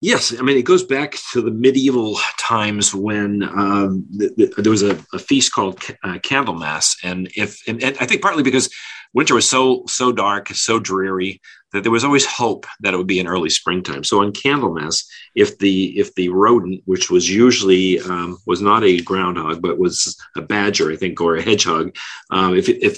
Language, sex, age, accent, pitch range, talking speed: English, male, 40-59, American, 90-110 Hz, 210 wpm